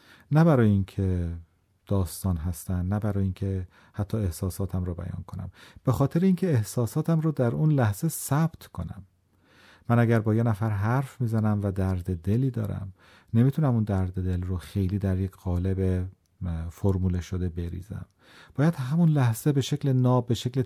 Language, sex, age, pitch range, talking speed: Persian, male, 40-59, 95-120 Hz, 155 wpm